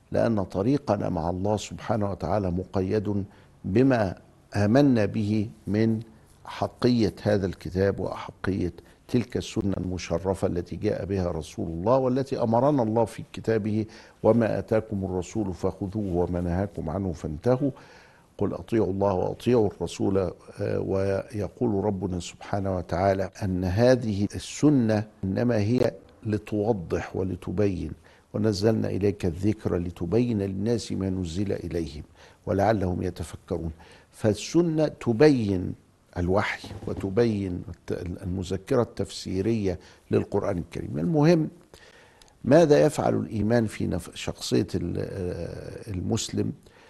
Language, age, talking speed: Arabic, 50-69, 95 wpm